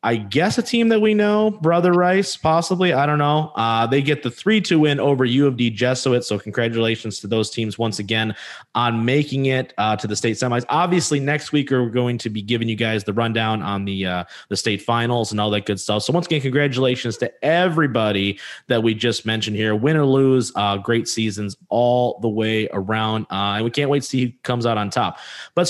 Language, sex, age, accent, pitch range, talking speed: English, male, 20-39, American, 110-150 Hz, 230 wpm